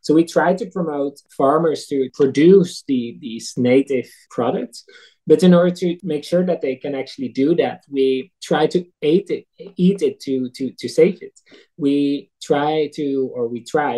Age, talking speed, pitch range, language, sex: 20-39, 180 wpm, 130-175 Hz, English, male